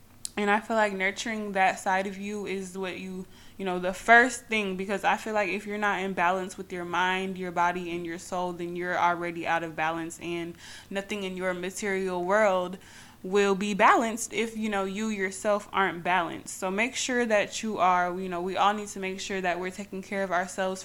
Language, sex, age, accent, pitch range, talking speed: English, female, 20-39, American, 185-215 Hz, 220 wpm